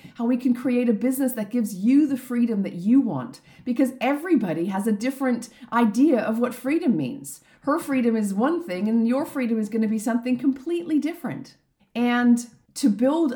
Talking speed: 190 wpm